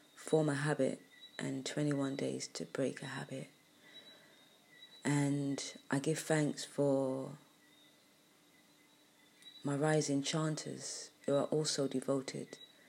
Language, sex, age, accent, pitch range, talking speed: English, female, 30-49, British, 135-155 Hz, 100 wpm